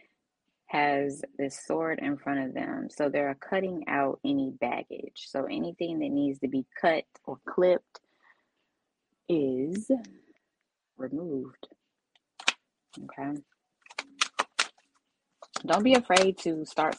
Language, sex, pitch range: English, female, 135-210 Hz